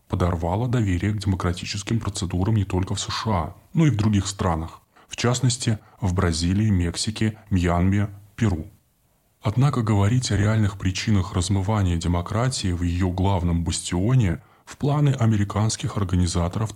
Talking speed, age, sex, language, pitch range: 130 wpm, 20-39, male, Russian, 90-110 Hz